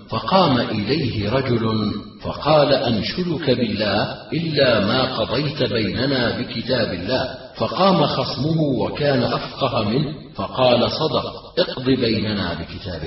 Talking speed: 105 wpm